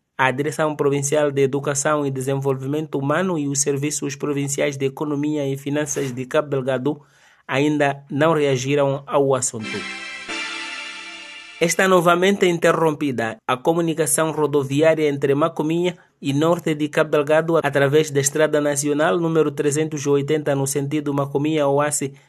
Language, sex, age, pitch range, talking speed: English, male, 30-49, 140-155 Hz, 125 wpm